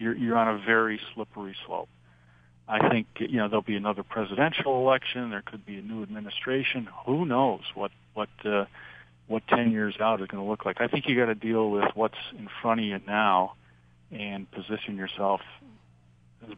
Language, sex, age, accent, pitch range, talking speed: English, male, 50-69, American, 100-130 Hz, 190 wpm